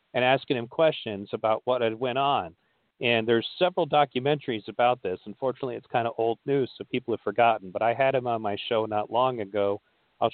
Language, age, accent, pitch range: English, 40-59, American, 120-140 Hz